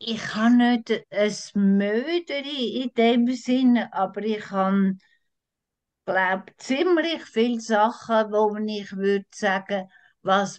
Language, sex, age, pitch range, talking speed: English, female, 60-79, 195-245 Hz, 115 wpm